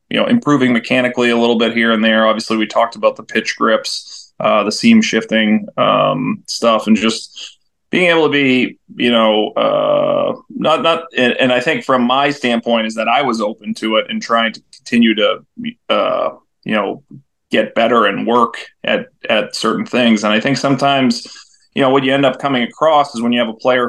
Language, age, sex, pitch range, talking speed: English, 20-39, male, 110-140 Hz, 205 wpm